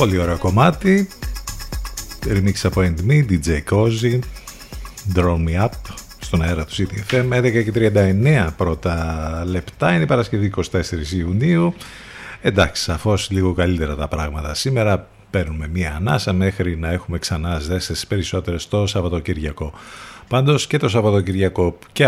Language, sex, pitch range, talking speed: Greek, male, 90-115 Hz, 125 wpm